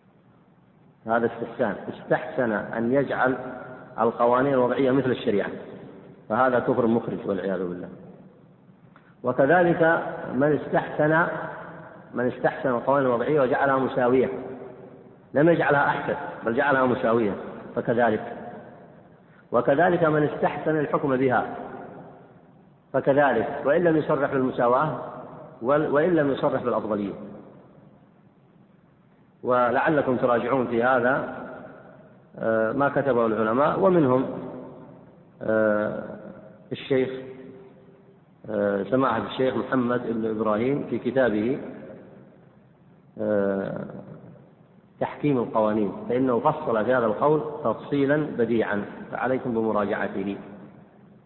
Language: Arabic